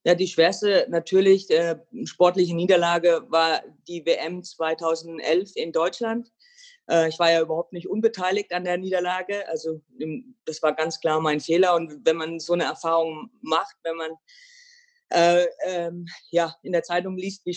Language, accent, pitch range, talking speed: German, German, 160-190 Hz, 160 wpm